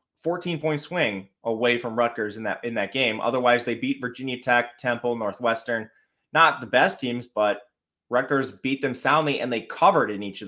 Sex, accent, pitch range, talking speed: male, American, 110-145 Hz, 190 wpm